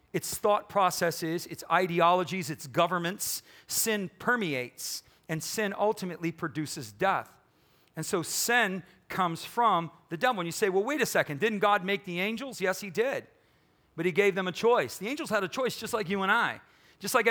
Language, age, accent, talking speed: English, 40-59, American, 185 wpm